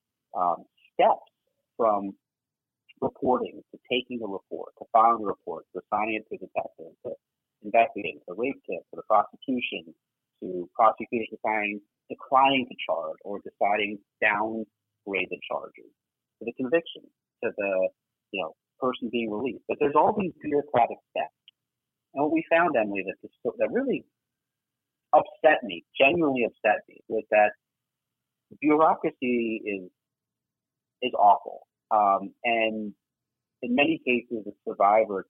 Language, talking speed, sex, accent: English, 135 wpm, male, American